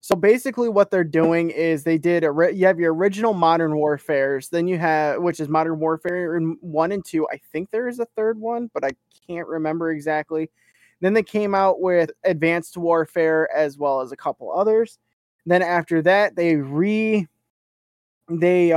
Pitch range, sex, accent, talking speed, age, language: 155-175 Hz, male, American, 175 wpm, 20-39, English